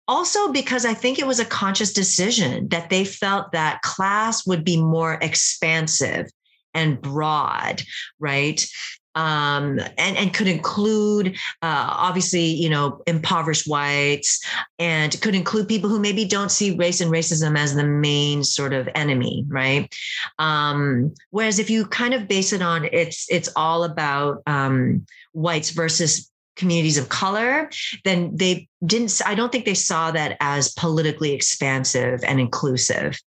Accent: American